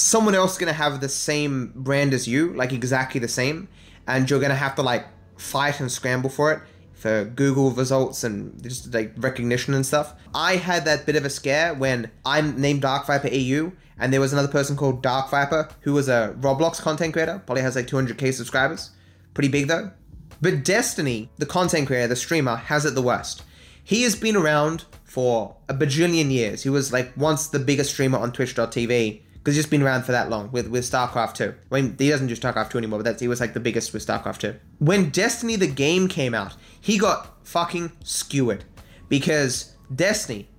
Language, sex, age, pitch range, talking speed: English, male, 20-39, 120-155 Hz, 205 wpm